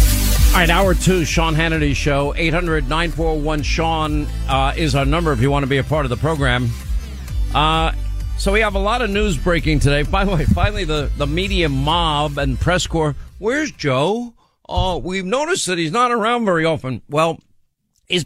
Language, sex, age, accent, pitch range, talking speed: English, male, 50-69, American, 125-160 Hz, 185 wpm